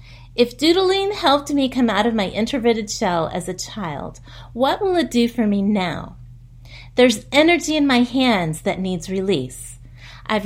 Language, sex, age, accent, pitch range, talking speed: English, female, 30-49, American, 180-265 Hz, 165 wpm